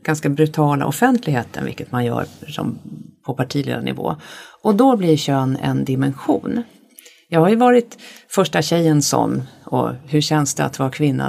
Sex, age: female, 50-69